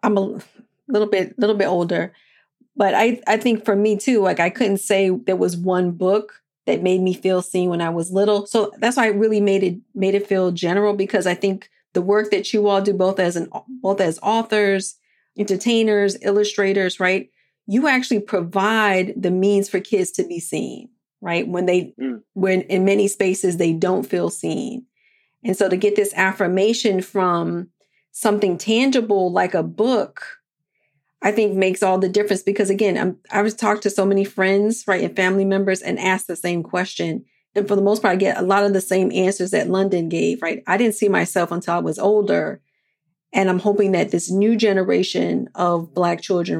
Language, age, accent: English, 40-59, American